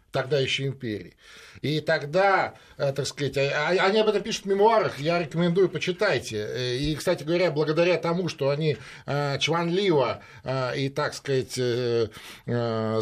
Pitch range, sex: 130-170 Hz, male